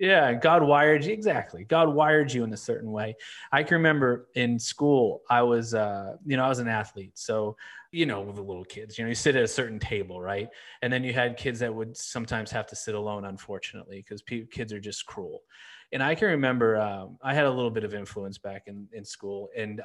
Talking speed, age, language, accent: 235 wpm, 20-39, English, American